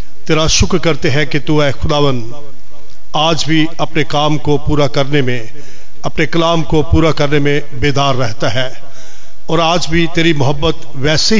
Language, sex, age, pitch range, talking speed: Hindi, male, 40-59, 140-165 Hz, 155 wpm